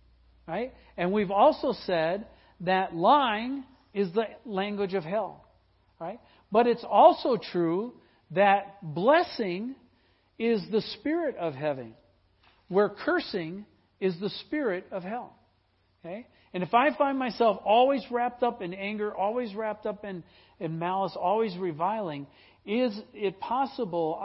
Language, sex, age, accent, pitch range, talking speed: English, male, 50-69, American, 145-210 Hz, 130 wpm